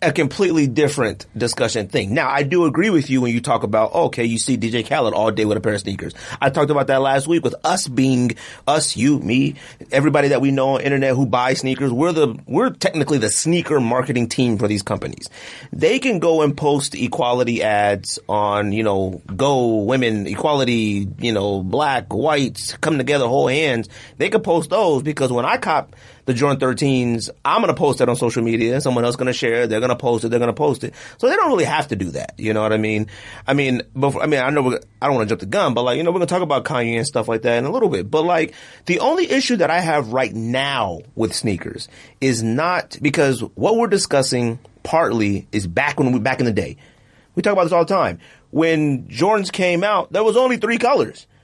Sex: male